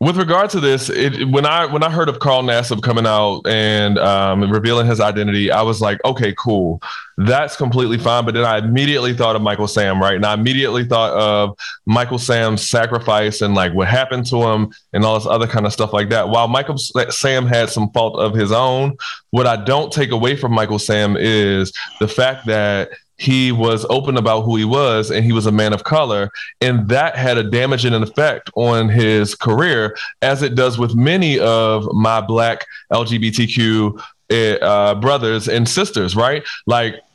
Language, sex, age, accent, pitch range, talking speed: English, male, 20-39, American, 110-130 Hz, 190 wpm